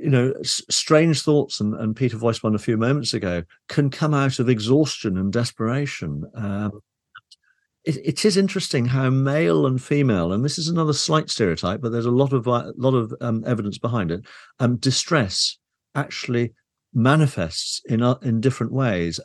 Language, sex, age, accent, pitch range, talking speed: English, male, 50-69, British, 95-125 Hz, 175 wpm